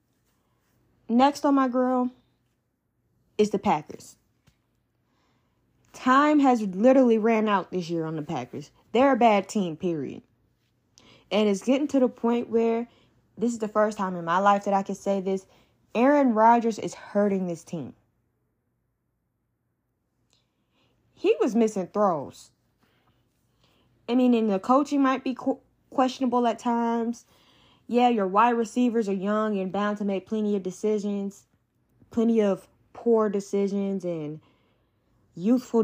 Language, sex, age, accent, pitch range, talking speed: English, female, 10-29, American, 185-235 Hz, 135 wpm